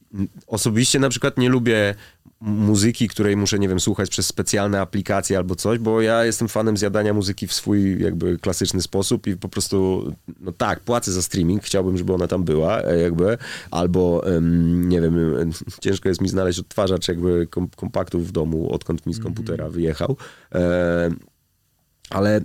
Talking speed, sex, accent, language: 160 wpm, male, native, Polish